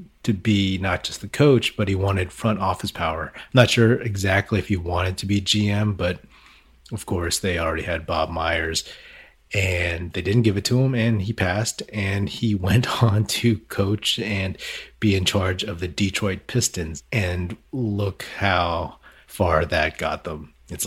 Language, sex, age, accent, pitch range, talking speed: English, male, 30-49, American, 85-105 Hz, 175 wpm